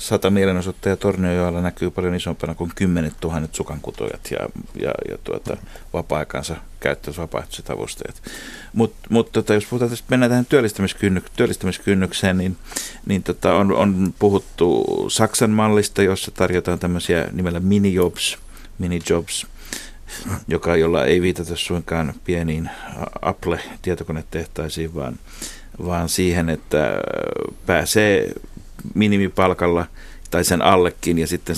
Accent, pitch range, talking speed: native, 85-100 Hz, 105 wpm